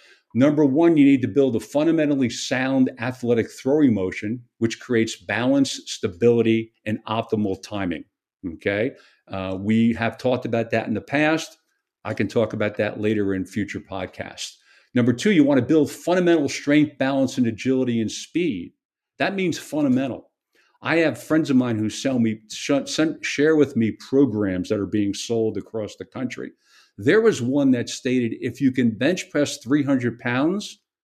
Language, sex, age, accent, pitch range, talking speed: English, male, 50-69, American, 115-150 Hz, 165 wpm